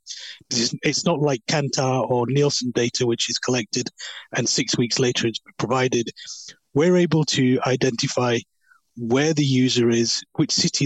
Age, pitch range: 30-49, 125-145 Hz